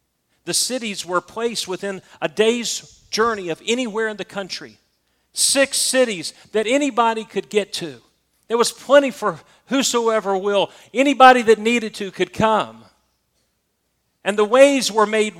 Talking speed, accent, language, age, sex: 145 wpm, American, English, 40-59, male